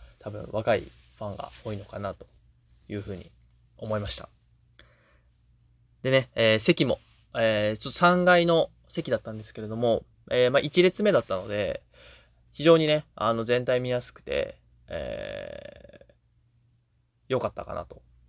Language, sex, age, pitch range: Japanese, male, 20-39, 95-130 Hz